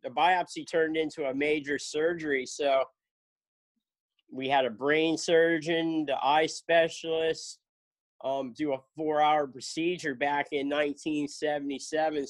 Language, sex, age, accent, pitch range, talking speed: English, male, 40-59, American, 140-155 Hz, 130 wpm